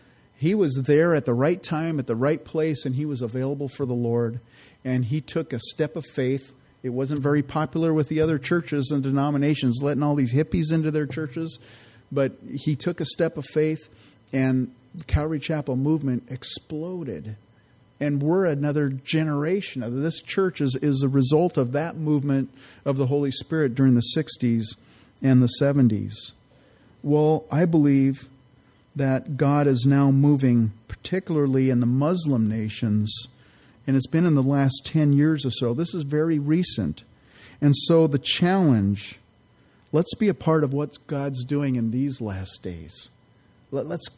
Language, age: English, 40-59